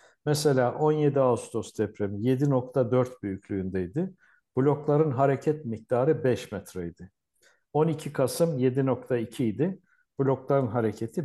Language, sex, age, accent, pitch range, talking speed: Turkish, male, 60-79, native, 115-155 Hz, 90 wpm